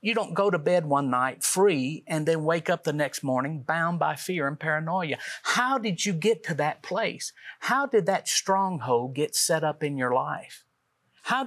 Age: 50-69